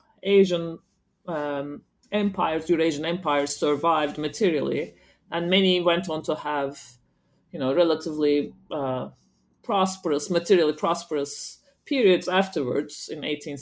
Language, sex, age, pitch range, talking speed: English, female, 30-49, 145-185 Hz, 105 wpm